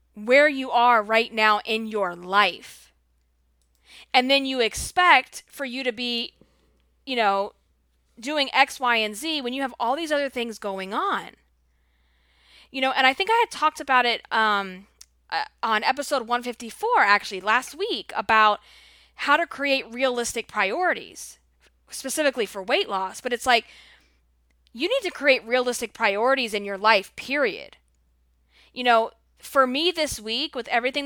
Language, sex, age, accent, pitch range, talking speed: English, female, 20-39, American, 195-255 Hz, 155 wpm